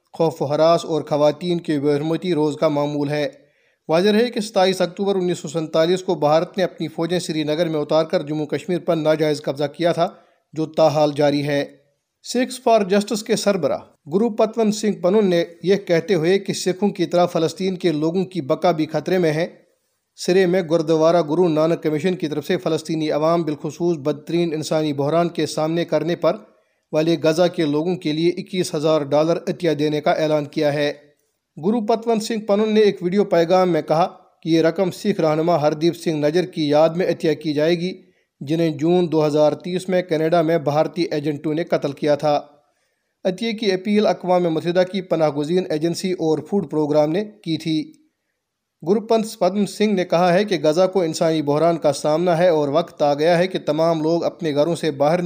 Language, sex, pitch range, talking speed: Urdu, male, 155-185 Hz, 190 wpm